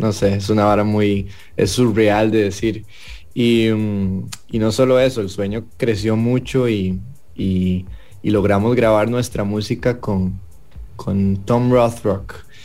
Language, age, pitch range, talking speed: English, 20-39, 100-110 Hz, 140 wpm